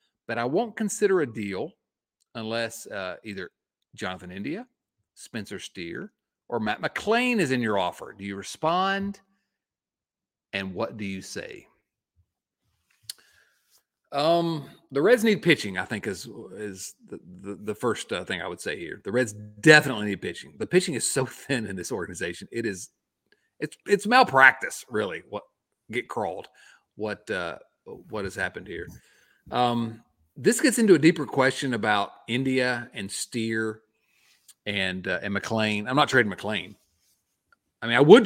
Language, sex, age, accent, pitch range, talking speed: English, male, 40-59, American, 105-160 Hz, 155 wpm